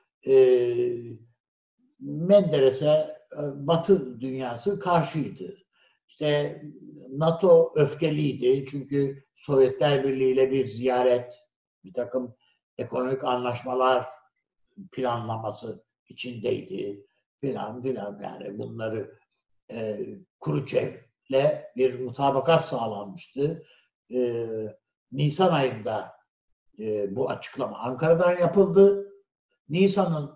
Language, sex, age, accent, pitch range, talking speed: Turkish, male, 60-79, native, 130-190 Hz, 75 wpm